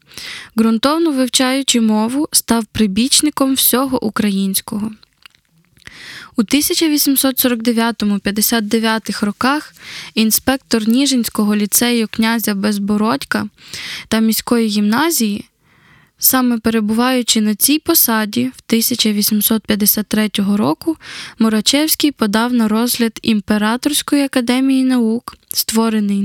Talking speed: 80 wpm